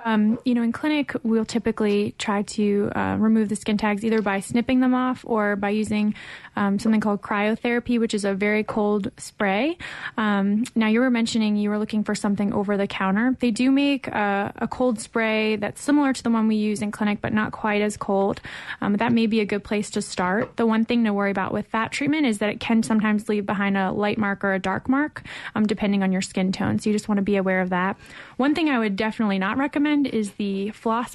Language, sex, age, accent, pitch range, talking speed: English, female, 20-39, American, 200-235 Hz, 235 wpm